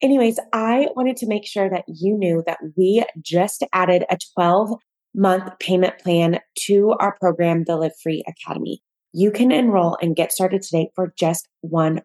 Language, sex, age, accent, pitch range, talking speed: English, female, 20-39, American, 165-195 Hz, 170 wpm